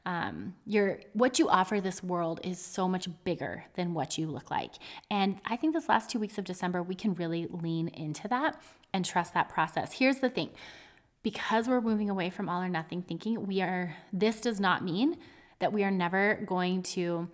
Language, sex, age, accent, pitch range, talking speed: English, female, 30-49, American, 180-240 Hz, 200 wpm